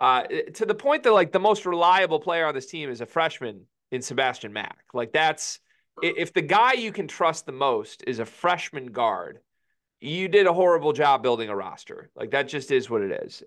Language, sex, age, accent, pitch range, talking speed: English, male, 30-49, American, 130-195 Hz, 215 wpm